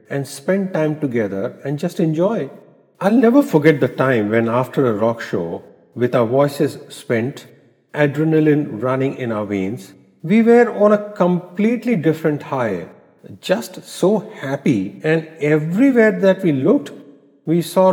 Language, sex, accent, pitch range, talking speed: English, male, Indian, 135-195 Hz, 145 wpm